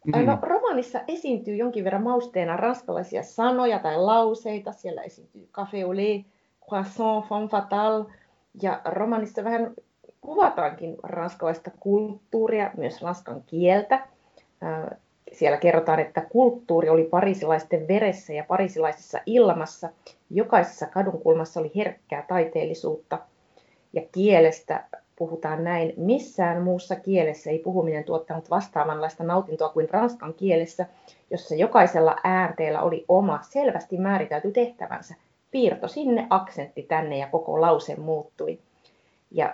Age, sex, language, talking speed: 30-49, female, Finnish, 110 wpm